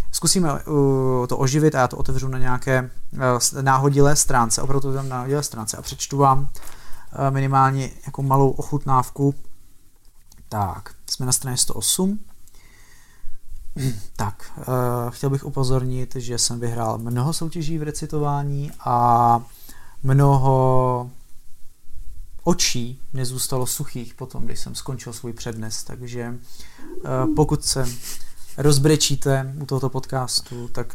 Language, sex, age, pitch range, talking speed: Czech, male, 30-49, 110-135 Hz, 120 wpm